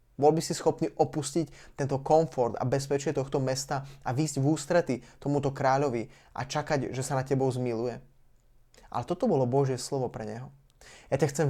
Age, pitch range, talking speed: 20-39, 130-155 Hz, 180 wpm